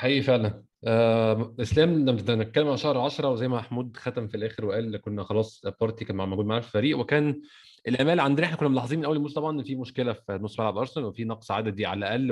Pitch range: 110-135 Hz